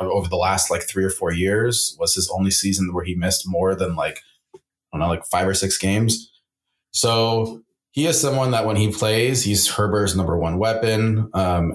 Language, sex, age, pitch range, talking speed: English, male, 20-39, 95-115 Hz, 205 wpm